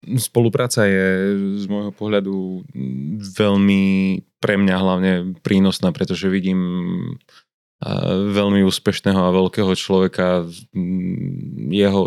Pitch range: 90-100 Hz